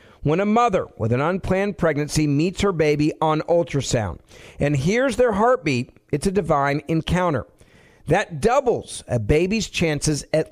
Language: English